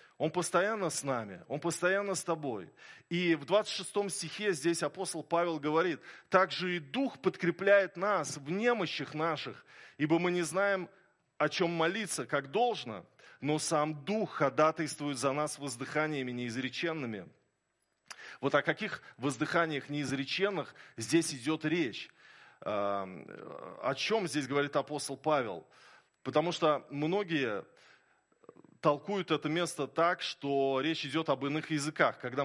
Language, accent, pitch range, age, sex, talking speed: Russian, native, 140-175 Hz, 20-39, male, 130 wpm